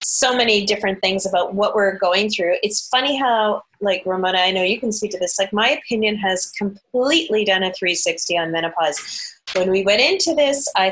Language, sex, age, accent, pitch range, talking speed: English, female, 30-49, American, 180-230 Hz, 205 wpm